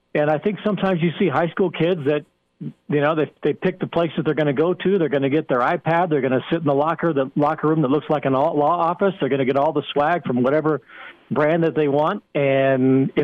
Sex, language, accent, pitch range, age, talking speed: male, English, American, 140-165 Hz, 50-69, 275 wpm